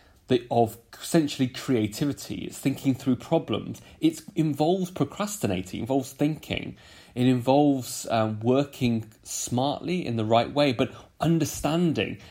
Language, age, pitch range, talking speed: English, 30-49, 105-145 Hz, 120 wpm